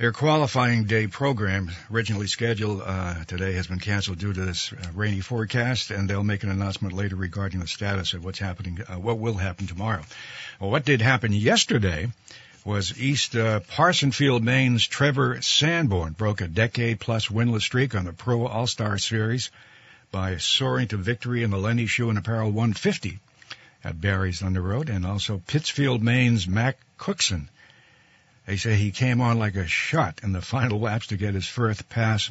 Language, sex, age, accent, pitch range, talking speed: English, male, 60-79, American, 100-120 Hz, 175 wpm